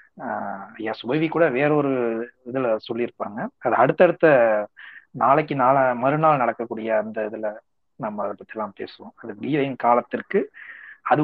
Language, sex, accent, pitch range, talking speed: Tamil, male, native, 120-170 Hz, 115 wpm